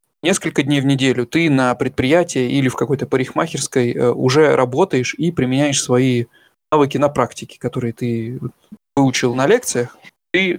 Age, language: 20-39, Russian